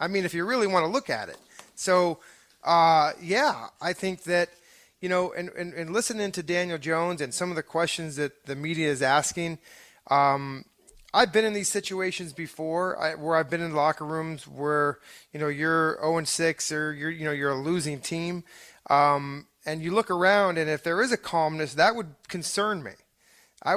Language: English